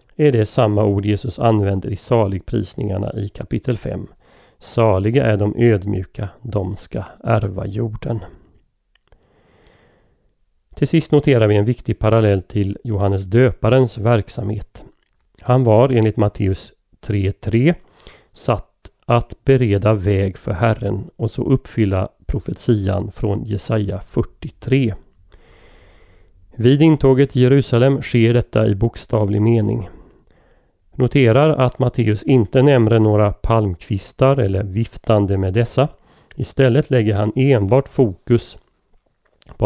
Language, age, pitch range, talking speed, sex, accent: Swedish, 30-49, 100-125 Hz, 110 wpm, male, native